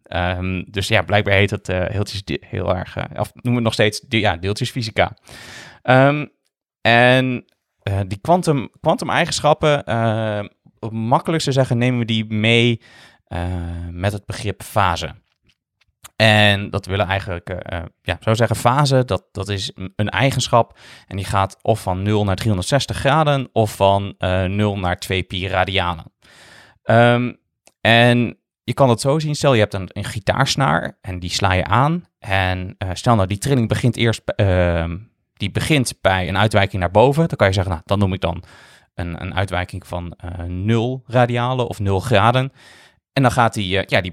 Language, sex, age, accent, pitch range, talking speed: Dutch, male, 20-39, Dutch, 95-120 Hz, 175 wpm